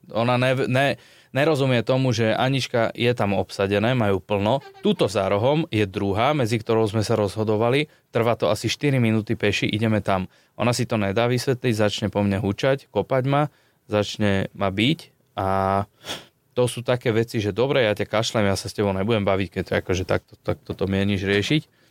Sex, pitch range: male, 100-125 Hz